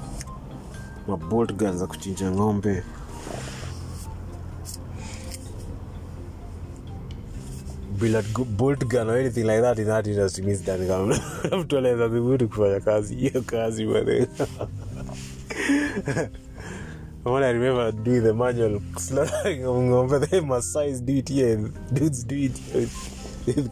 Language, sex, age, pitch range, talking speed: Swahili, male, 20-39, 90-130 Hz, 95 wpm